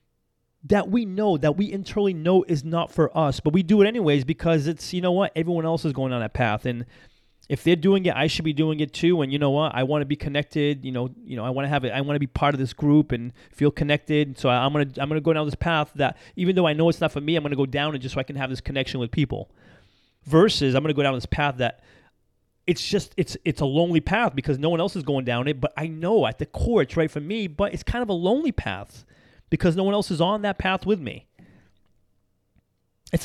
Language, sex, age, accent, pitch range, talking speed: English, male, 30-49, American, 135-180 Hz, 280 wpm